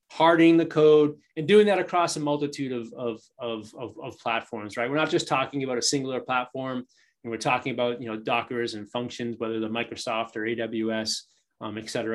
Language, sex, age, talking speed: English, male, 30-49, 195 wpm